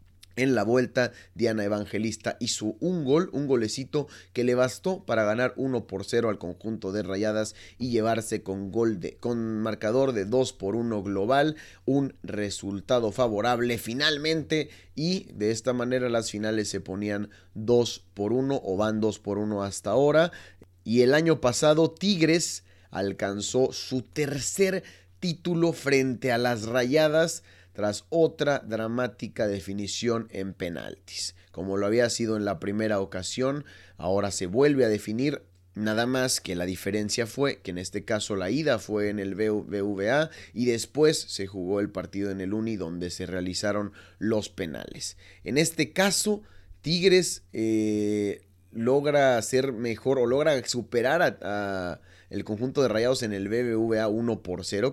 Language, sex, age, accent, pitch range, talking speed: Spanish, male, 30-49, Mexican, 100-130 Hz, 155 wpm